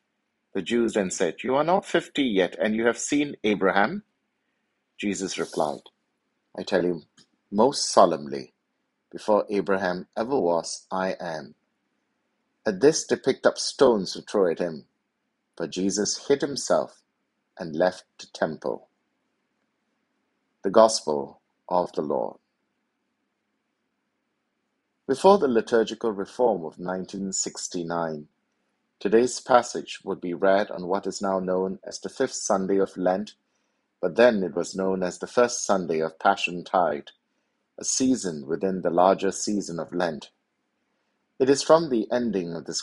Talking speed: 140 wpm